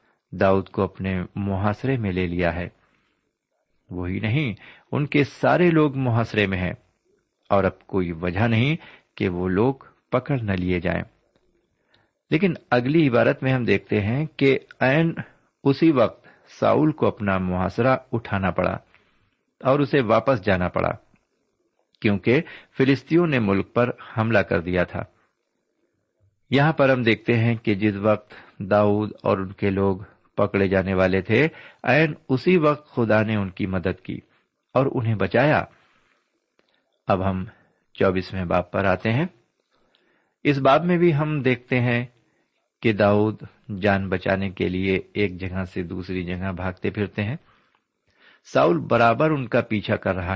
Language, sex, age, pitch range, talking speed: Urdu, male, 50-69, 95-130 Hz, 150 wpm